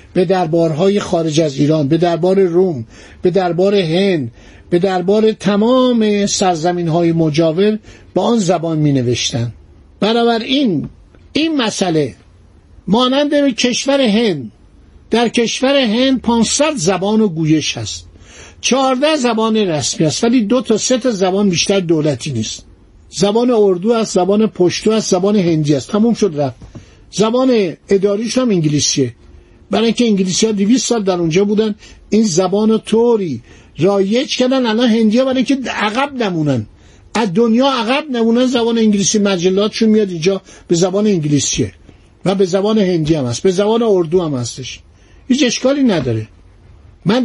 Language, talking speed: Persian, 145 wpm